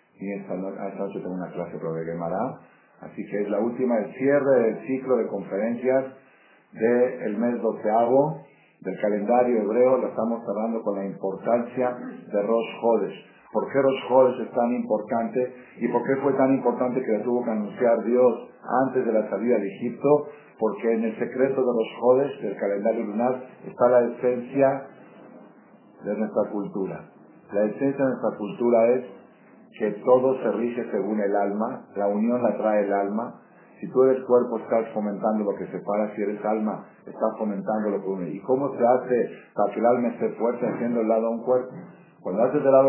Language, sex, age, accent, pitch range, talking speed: Spanish, male, 50-69, Spanish, 100-125 Hz, 185 wpm